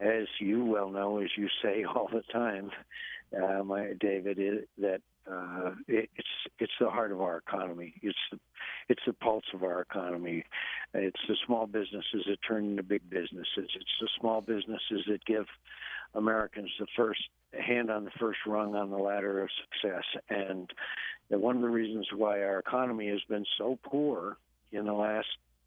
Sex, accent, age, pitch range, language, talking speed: male, American, 60-79, 100-115 Hz, English, 180 wpm